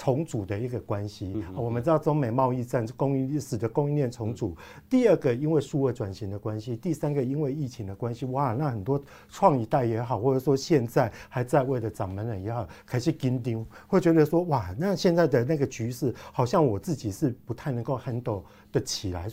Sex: male